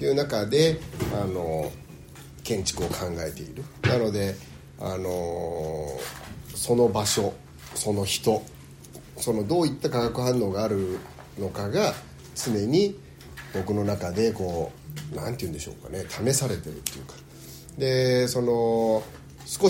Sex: male